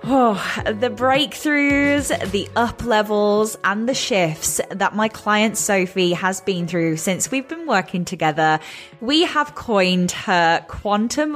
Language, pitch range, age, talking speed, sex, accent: English, 180-230 Hz, 10-29, 135 wpm, female, British